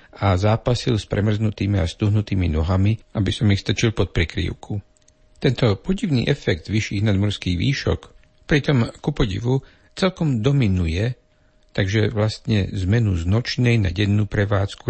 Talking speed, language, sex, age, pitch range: 130 wpm, Slovak, male, 60-79, 95-115 Hz